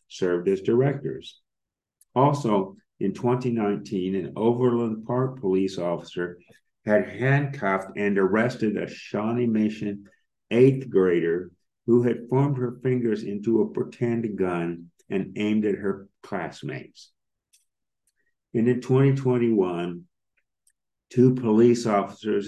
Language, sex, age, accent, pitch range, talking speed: English, male, 50-69, American, 95-120 Hz, 105 wpm